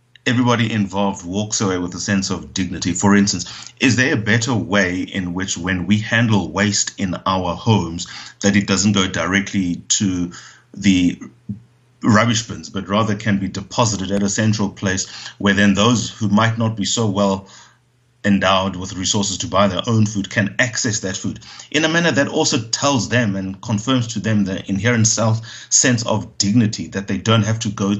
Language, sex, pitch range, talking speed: English, male, 100-120 Hz, 185 wpm